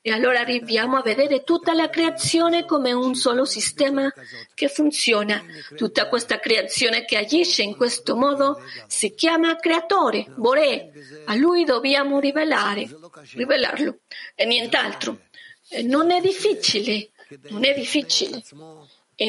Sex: female